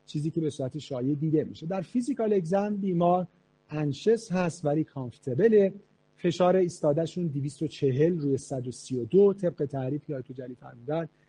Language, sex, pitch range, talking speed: Persian, male, 140-180 Hz, 145 wpm